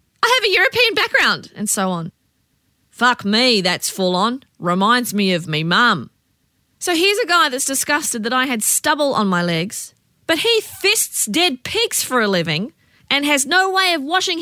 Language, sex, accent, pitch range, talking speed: English, female, Australian, 175-290 Hz, 185 wpm